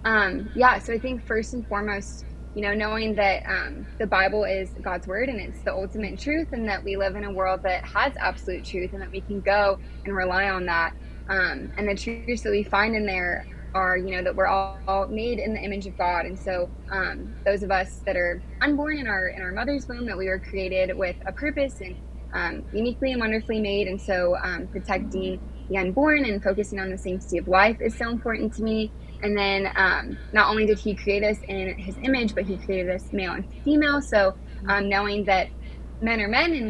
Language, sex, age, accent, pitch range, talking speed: English, female, 20-39, American, 190-220 Hz, 225 wpm